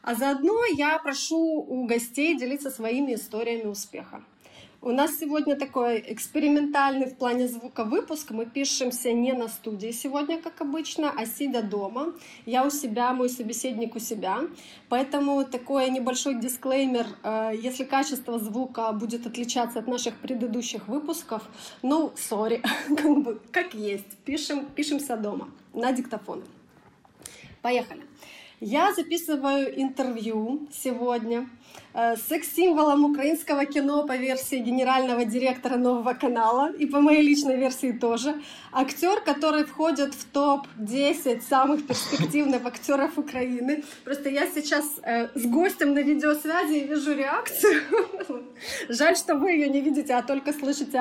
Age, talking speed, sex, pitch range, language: 30-49, 130 wpm, female, 245-295 Hz, Russian